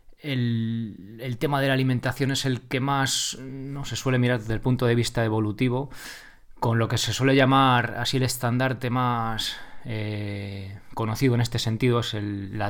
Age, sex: 20-39, male